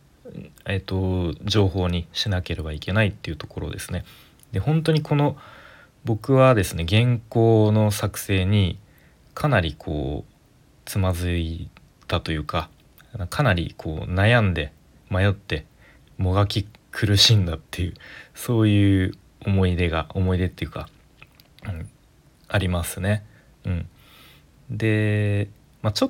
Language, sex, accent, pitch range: Japanese, male, native, 90-110 Hz